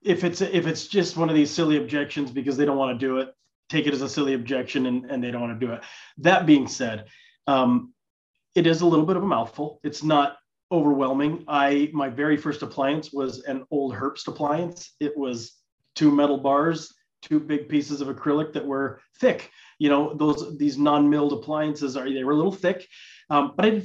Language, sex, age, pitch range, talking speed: English, male, 30-49, 135-155 Hz, 215 wpm